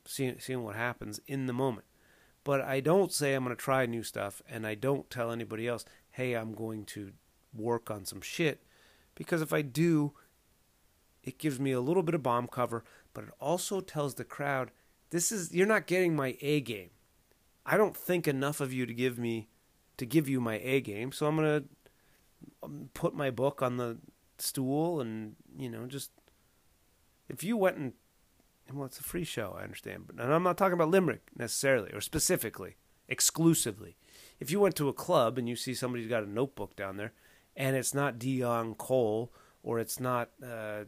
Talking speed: 195 wpm